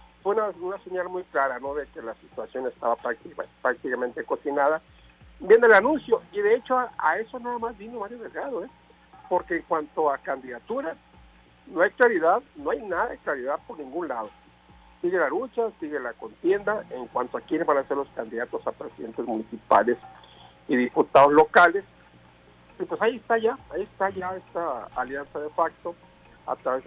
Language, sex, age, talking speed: Spanish, male, 50-69, 180 wpm